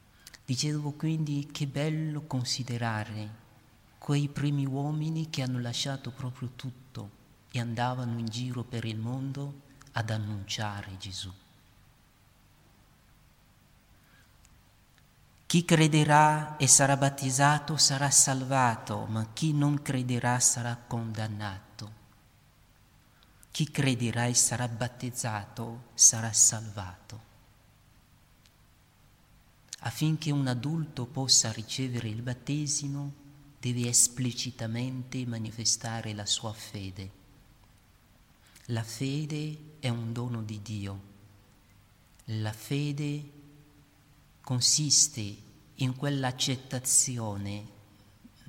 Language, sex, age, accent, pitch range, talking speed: Italian, male, 40-59, native, 110-140 Hz, 85 wpm